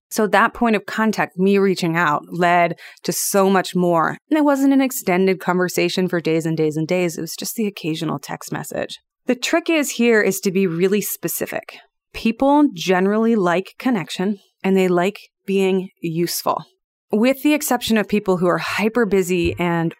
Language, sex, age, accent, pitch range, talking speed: English, female, 30-49, American, 170-220 Hz, 180 wpm